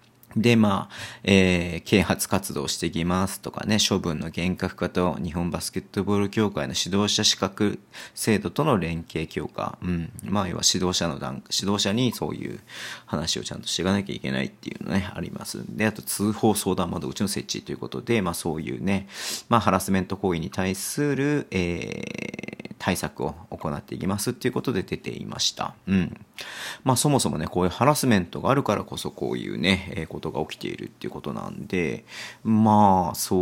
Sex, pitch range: male, 85-105 Hz